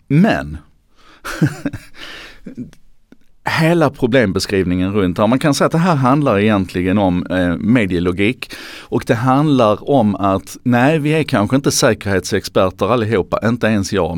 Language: Swedish